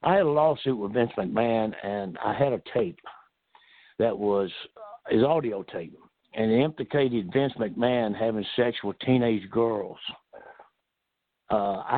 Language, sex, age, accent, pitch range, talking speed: English, male, 60-79, American, 115-145 Hz, 145 wpm